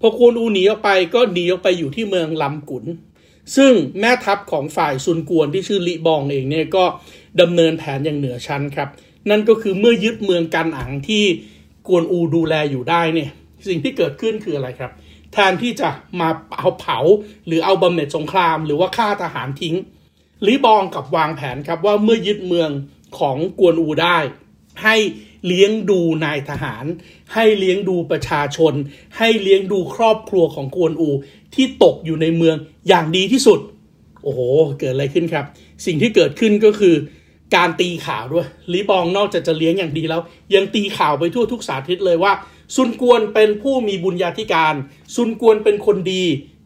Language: Thai